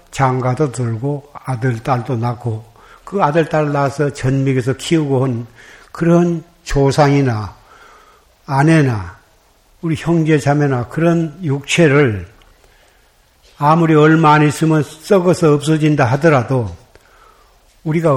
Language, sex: Korean, male